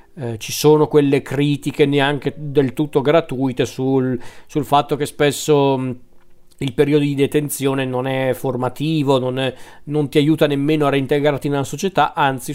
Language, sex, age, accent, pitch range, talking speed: Italian, male, 40-59, native, 130-150 Hz, 150 wpm